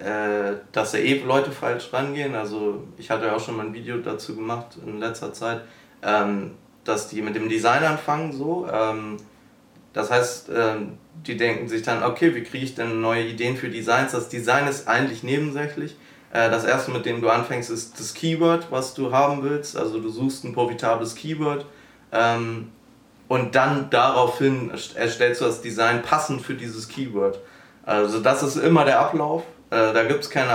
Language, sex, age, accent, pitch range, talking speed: German, male, 20-39, German, 110-135 Hz, 170 wpm